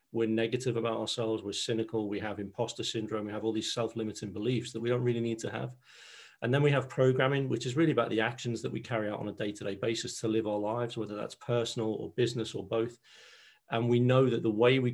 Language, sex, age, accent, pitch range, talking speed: English, male, 40-59, British, 110-125 Hz, 240 wpm